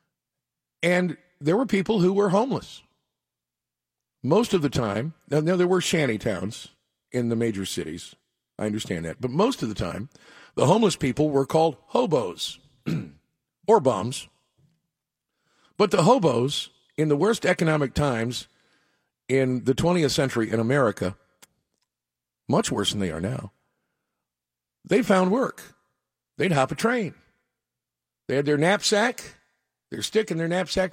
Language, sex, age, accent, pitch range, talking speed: English, male, 50-69, American, 110-170 Hz, 140 wpm